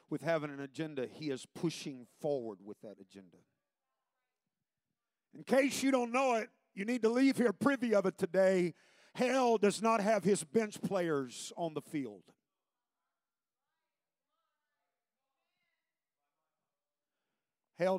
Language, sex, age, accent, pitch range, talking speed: English, male, 50-69, American, 155-215 Hz, 125 wpm